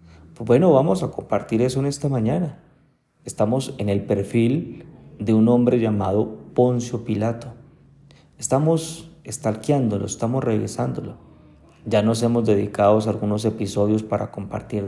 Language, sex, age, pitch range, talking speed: Spanish, male, 30-49, 110-130 Hz, 120 wpm